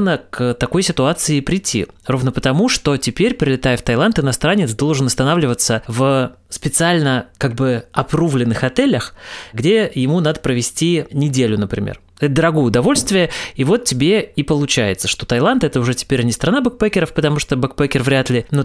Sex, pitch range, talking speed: male, 130-165 Hz, 150 wpm